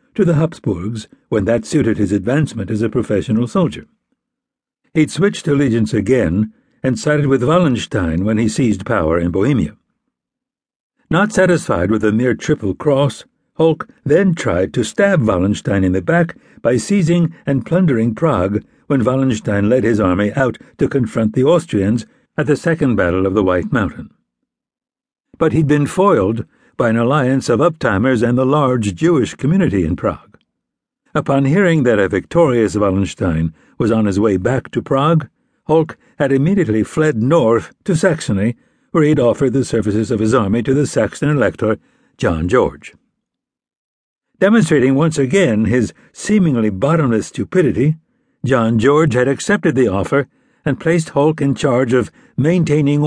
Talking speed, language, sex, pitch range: 155 wpm, English, male, 110-165 Hz